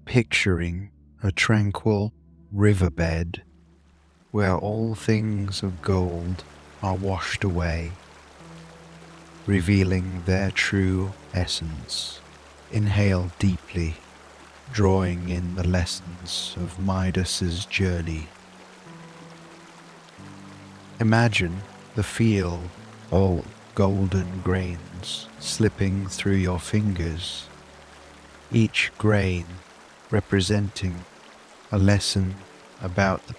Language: English